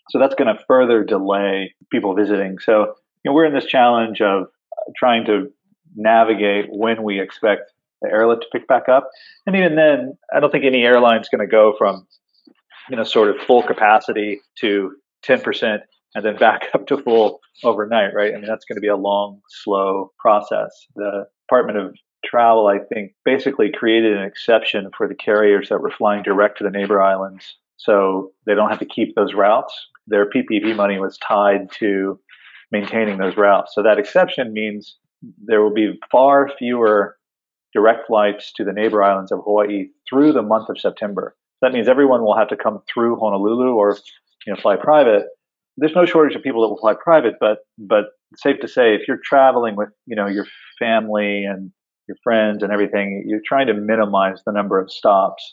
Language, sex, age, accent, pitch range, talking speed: English, male, 40-59, American, 100-120 Hz, 190 wpm